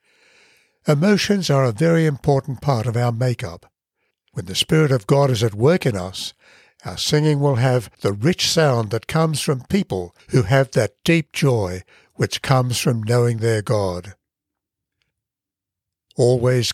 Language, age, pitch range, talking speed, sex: English, 60-79, 115-150 Hz, 150 wpm, male